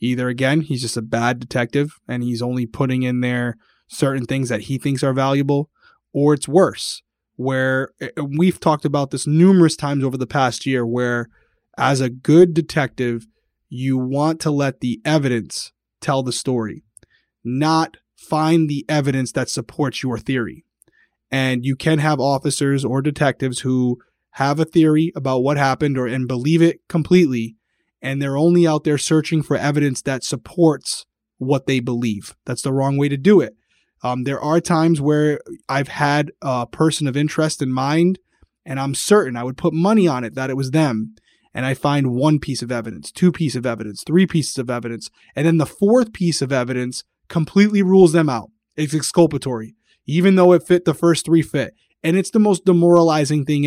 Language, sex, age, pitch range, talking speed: English, male, 20-39, 125-155 Hz, 180 wpm